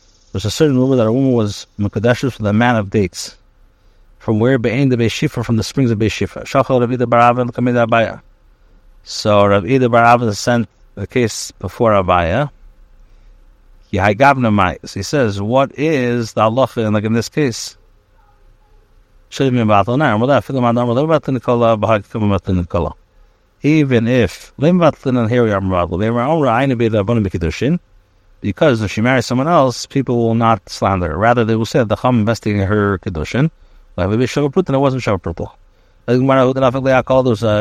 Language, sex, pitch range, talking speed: English, male, 105-125 Hz, 130 wpm